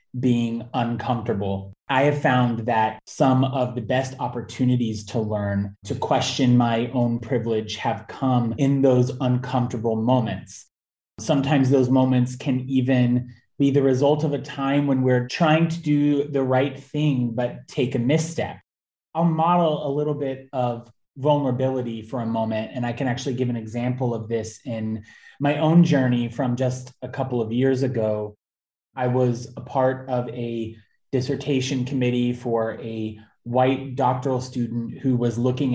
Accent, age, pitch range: American, 20-39, 115-135 Hz